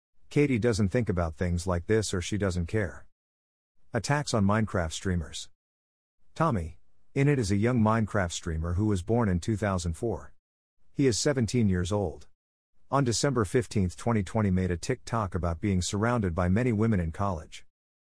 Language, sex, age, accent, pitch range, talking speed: English, male, 50-69, American, 85-120 Hz, 160 wpm